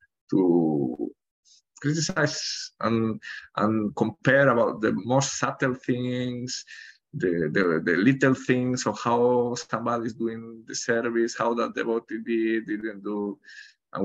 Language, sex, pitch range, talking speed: English, male, 115-140 Hz, 125 wpm